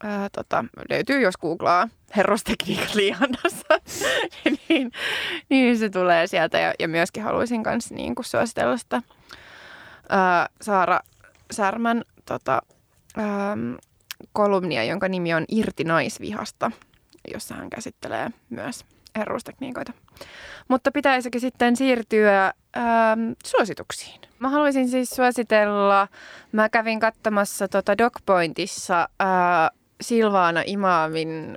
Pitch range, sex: 180-240 Hz, female